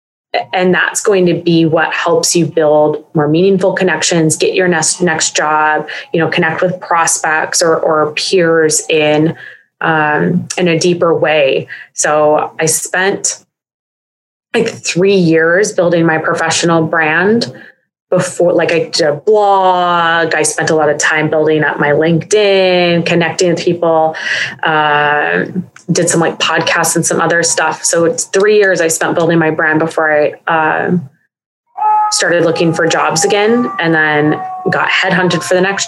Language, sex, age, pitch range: English, female, 20-39, 155-185 Hz